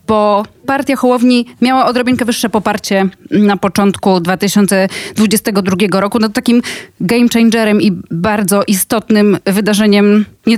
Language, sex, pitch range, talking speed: Polish, female, 195-225 Hz, 115 wpm